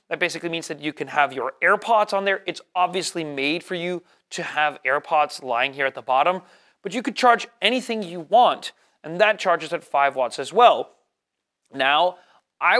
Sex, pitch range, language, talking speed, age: male, 160-210 Hz, Swedish, 190 wpm, 30-49